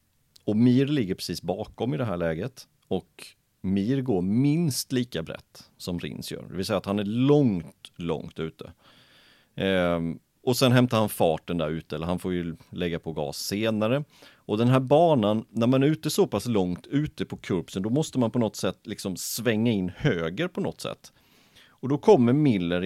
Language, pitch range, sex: Swedish, 90-135 Hz, male